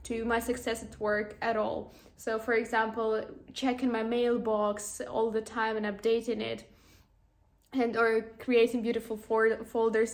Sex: female